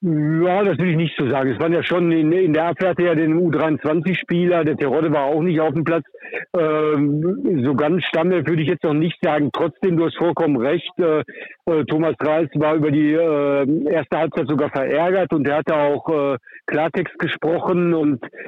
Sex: male